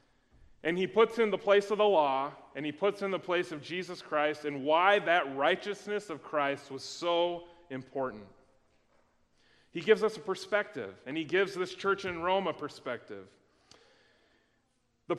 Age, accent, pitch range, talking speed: 30-49, American, 135-195 Hz, 165 wpm